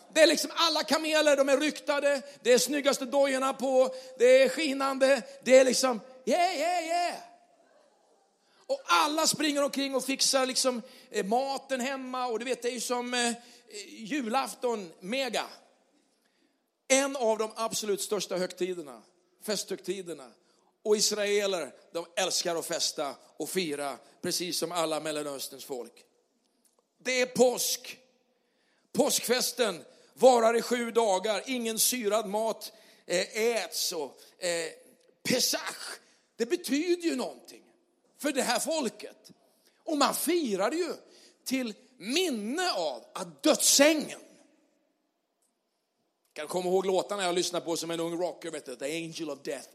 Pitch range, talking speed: 205-285 Hz, 135 wpm